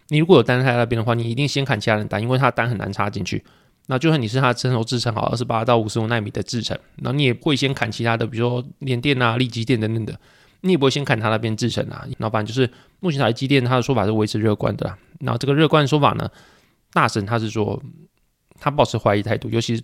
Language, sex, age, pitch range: Chinese, male, 20-39, 115-135 Hz